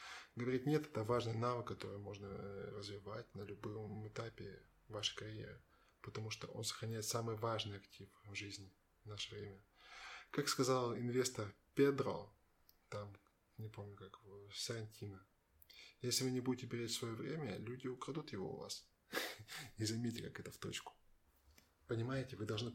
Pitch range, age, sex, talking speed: 105-125 Hz, 20-39, male, 150 wpm